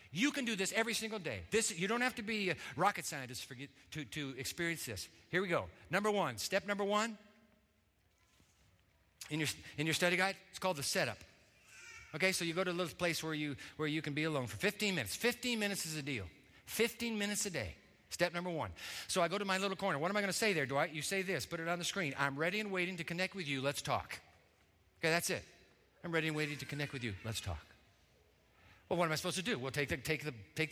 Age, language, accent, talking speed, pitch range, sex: 50-69, English, American, 250 wpm, 140-205 Hz, male